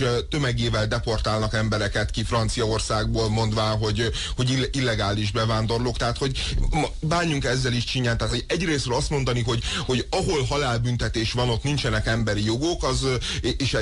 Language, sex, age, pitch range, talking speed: Hungarian, male, 30-49, 105-130 Hz, 135 wpm